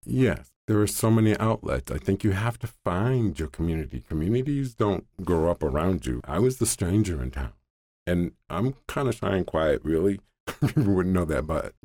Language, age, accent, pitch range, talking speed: English, 50-69, American, 80-105 Hz, 200 wpm